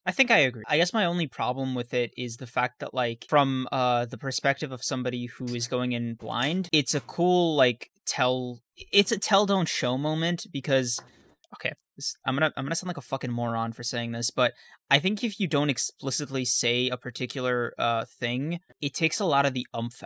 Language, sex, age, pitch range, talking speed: English, male, 20-39, 120-145 Hz, 210 wpm